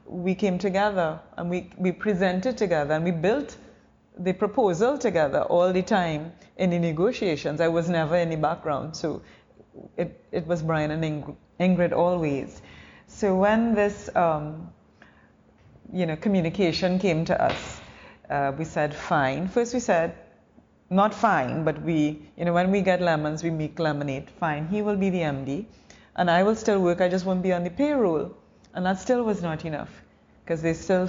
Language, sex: English, female